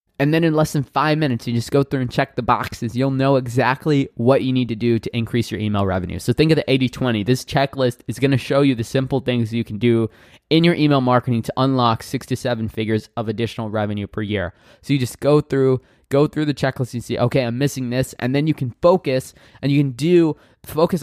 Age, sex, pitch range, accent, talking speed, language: 20-39, male, 115-140 Hz, American, 245 wpm, English